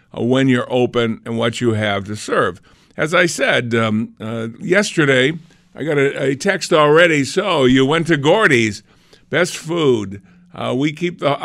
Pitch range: 115-150 Hz